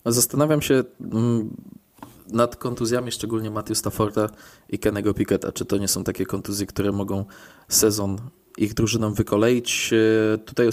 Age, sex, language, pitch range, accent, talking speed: 20-39, male, Polish, 100-120 Hz, native, 135 wpm